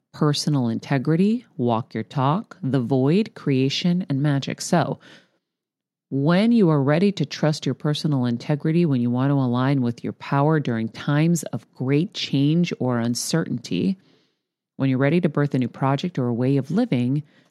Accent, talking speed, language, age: American, 165 wpm, English, 40-59